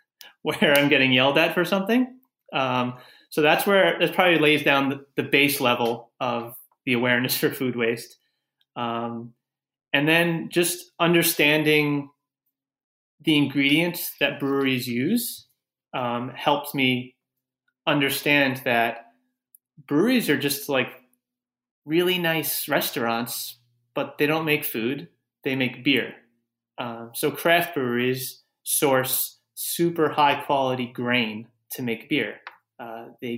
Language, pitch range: English, 120-145 Hz